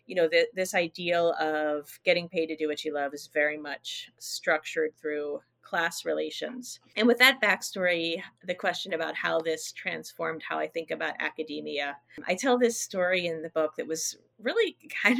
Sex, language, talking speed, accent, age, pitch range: female, English, 180 wpm, American, 30-49, 155-220 Hz